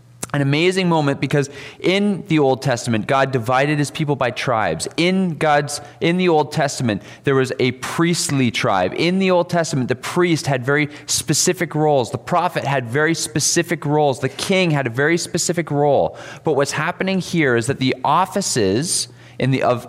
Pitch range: 115-150 Hz